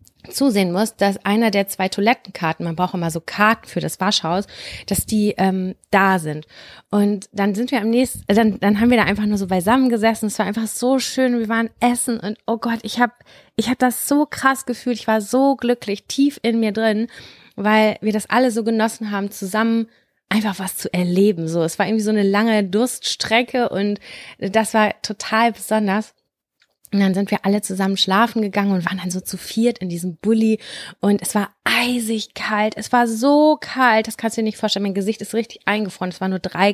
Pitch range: 195-230 Hz